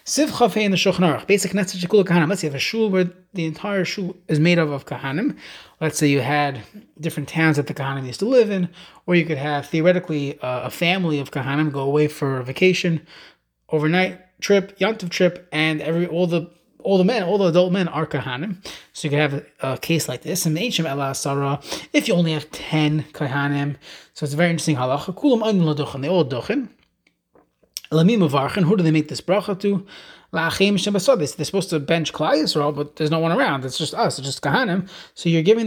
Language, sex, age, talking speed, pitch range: English, male, 30-49, 205 wpm, 150-190 Hz